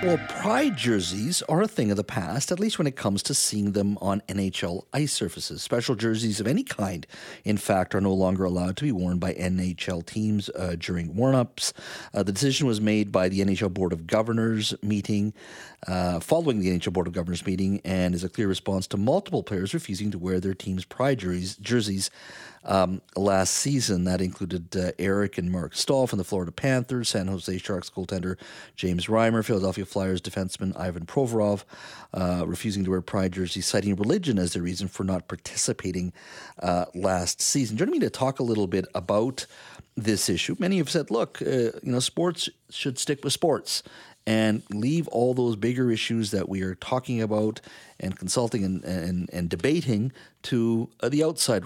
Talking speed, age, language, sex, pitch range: 185 wpm, 40-59, English, male, 95-120 Hz